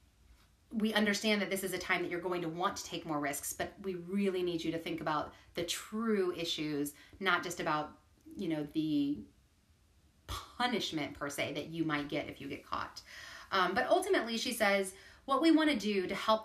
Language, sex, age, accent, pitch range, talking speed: English, female, 30-49, American, 180-240 Hz, 205 wpm